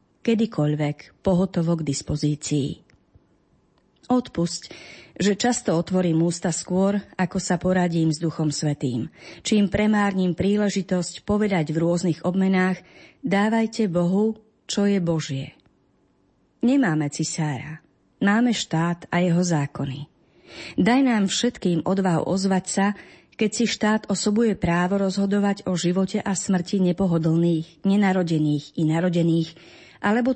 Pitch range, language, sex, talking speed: 160-200 Hz, Slovak, female, 110 wpm